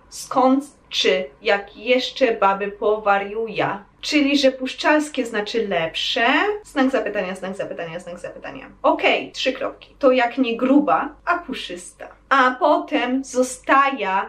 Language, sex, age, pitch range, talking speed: Polish, female, 20-39, 225-280 Hz, 120 wpm